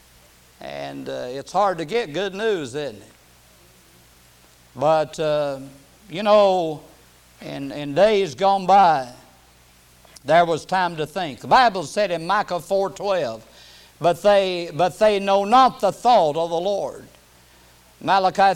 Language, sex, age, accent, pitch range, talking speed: English, male, 50-69, American, 140-210 Hz, 140 wpm